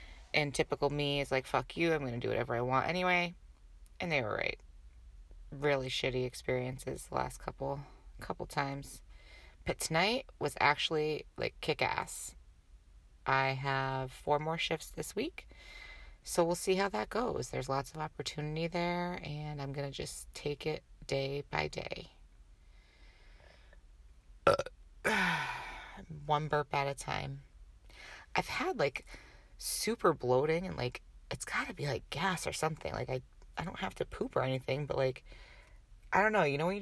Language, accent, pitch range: English, American, 120-155 Hz